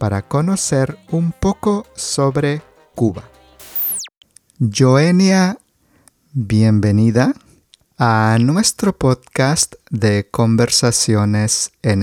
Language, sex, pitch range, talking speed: English, male, 115-145 Hz, 70 wpm